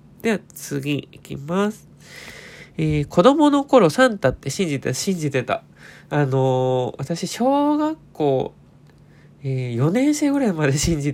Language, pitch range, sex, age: Japanese, 135-190 Hz, male, 20-39